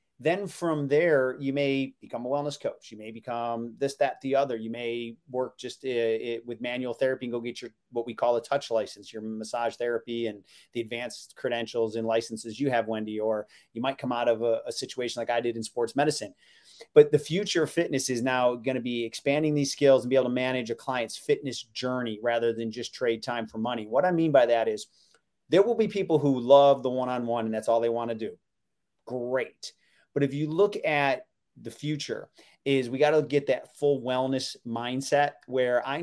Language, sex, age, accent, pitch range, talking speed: English, male, 30-49, American, 115-140 Hz, 220 wpm